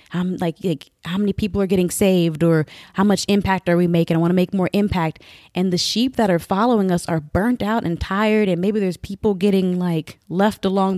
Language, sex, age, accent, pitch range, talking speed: English, female, 20-39, American, 160-195 Hz, 230 wpm